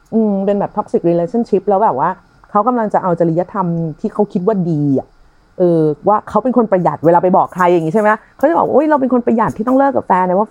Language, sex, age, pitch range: Thai, female, 30-49, 175-250 Hz